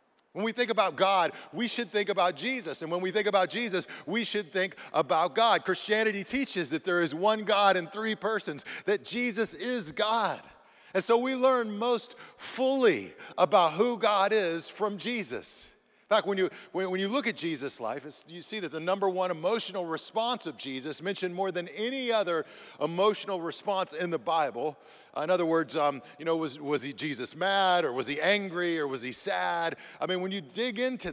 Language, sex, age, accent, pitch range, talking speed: English, male, 40-59, American, 160-215 Hz, 195 wpm